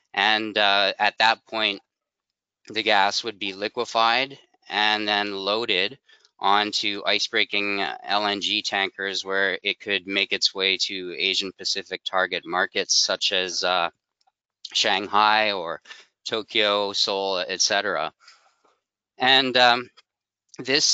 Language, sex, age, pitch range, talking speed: English, male, 20-39, 95-110 Hz, 110 wpm